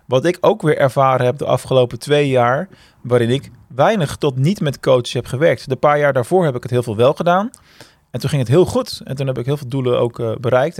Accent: Dutch